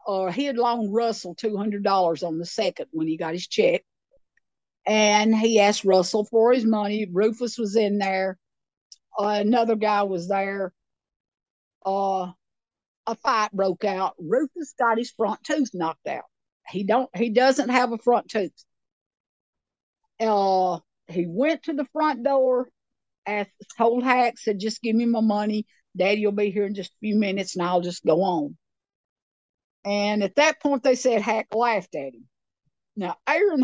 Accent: American